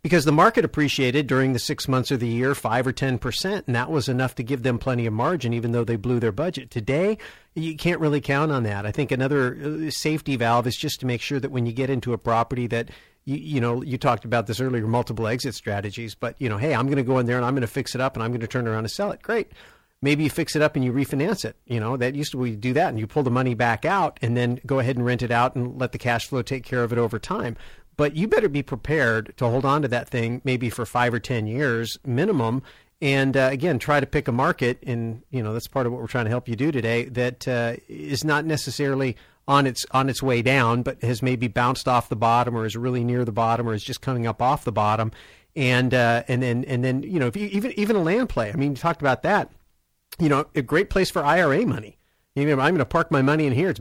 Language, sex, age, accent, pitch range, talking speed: English, male, 40-59, American, 120-140 Hz, 275 wpm